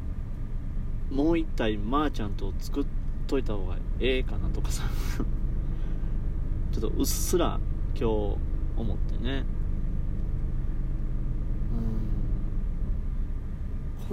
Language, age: Japanese, 30-49